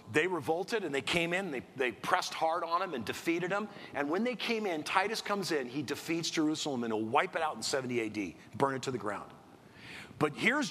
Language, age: English, 50-69